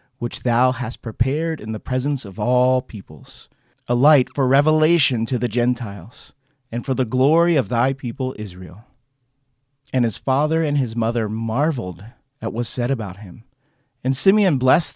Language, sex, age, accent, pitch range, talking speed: English, male, 30-49, American, 115-145 Hz, 165 wpm